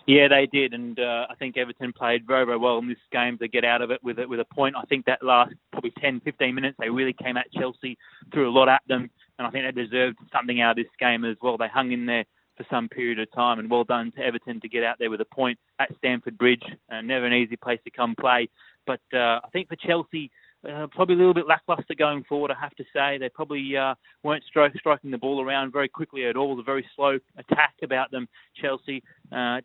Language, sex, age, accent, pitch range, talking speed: English, male, 20-39, Australian, 120-140 Hz, 255 wpm